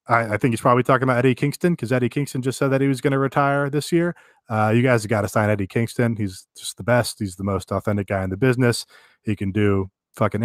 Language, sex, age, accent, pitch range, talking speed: English, male, 30-49, American, 105-130 Hz, 260 wpm